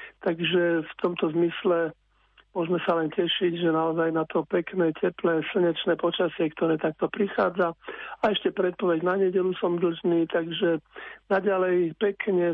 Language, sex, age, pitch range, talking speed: Slovak, male, 50-69, 165-185 Hz, 140 wpm